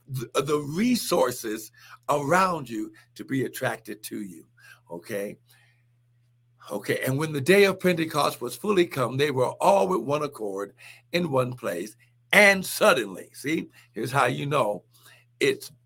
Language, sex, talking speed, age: English, male, 140 wpm, 60-79